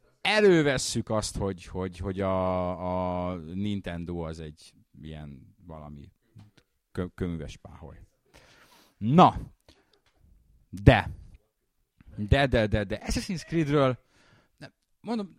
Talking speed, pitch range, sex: 95 wpm, 95-130 Hz, male